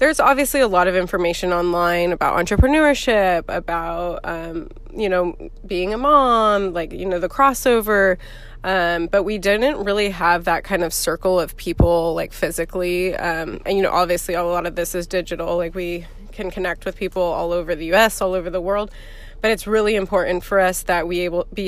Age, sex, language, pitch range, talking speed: 20-39, female, English, 170-200 Hz, 195 wpm